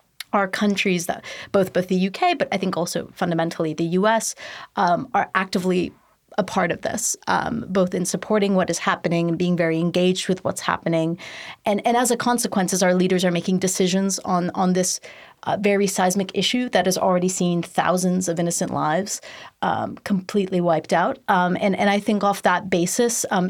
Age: 30-49